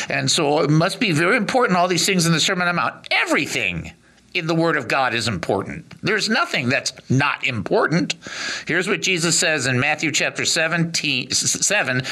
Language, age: English, 50-69